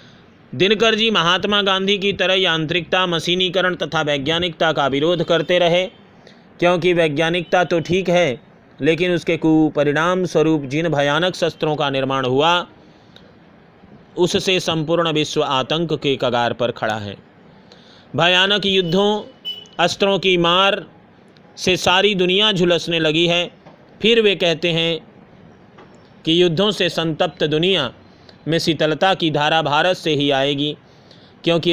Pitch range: 150-180 Hz